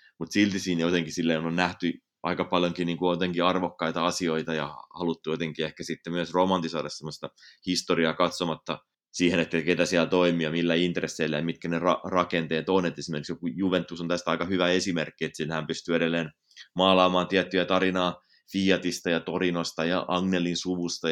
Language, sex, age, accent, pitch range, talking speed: Finnish, male, 20-39, native, 80-90 Hz, 160 wpm